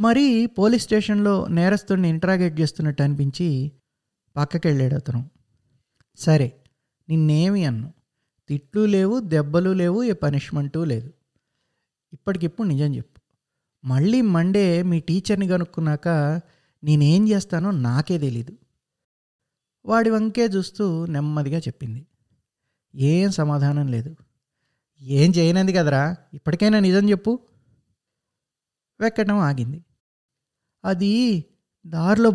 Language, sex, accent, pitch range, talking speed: Telugu, male, native, 145-210 Hz, 95 wpm